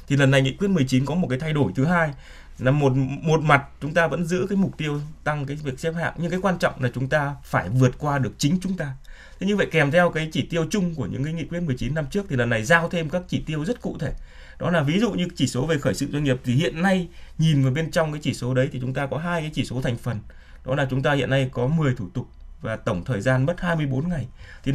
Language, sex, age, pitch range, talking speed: Vietnamese, male, 20-39, 125-165 Hz, 295 wpm